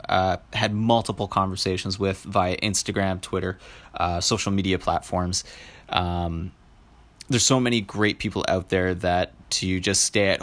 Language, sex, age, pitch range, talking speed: English, male, 20-39, 90-105 Hz, 145 wpm